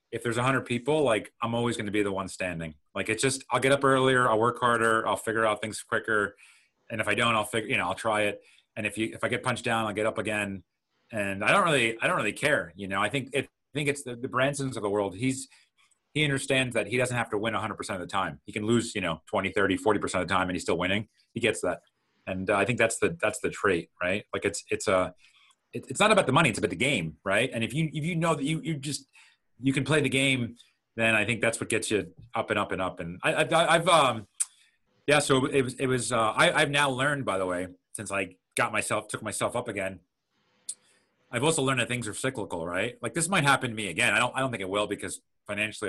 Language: English